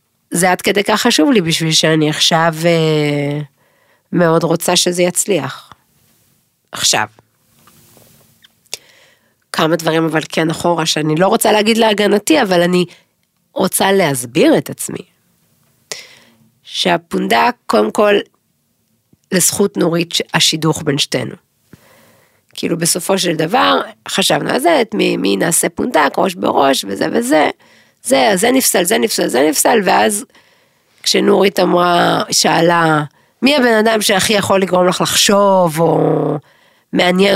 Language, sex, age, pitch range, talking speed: Hebrew, female, 50-69, 155-195 Hz, 120 wpm